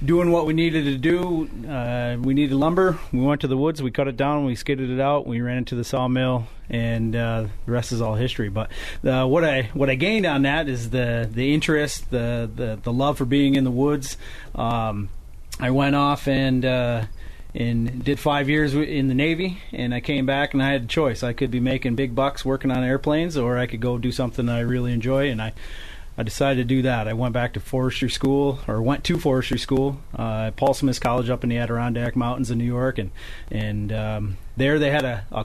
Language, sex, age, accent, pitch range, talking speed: English, male, 30-49, American, 120-140 Hz, 230 wpm